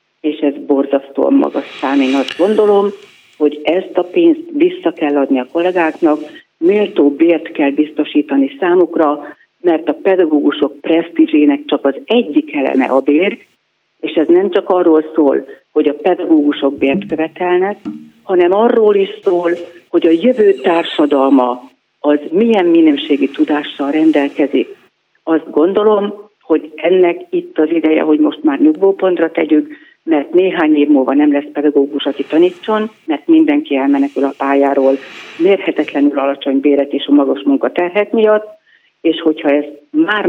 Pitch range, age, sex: 150-215 Hz, 50-69, female